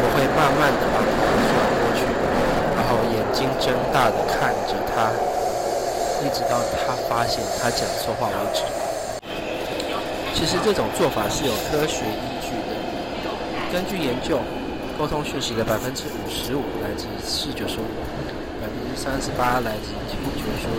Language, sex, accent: Chinese, male, native